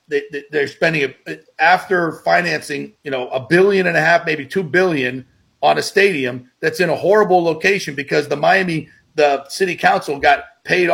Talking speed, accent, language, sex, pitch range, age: 175 wpm, American, English, male, 150-210 Hz, 40-59